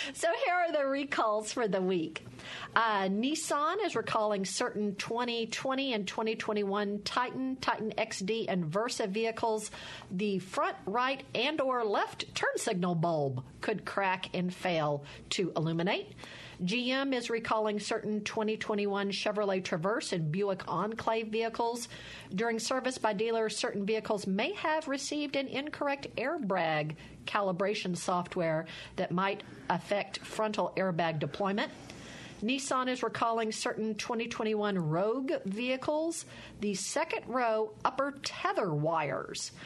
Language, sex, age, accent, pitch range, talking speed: English, female, 50-69, American, 185-235 Hz, 125 wpm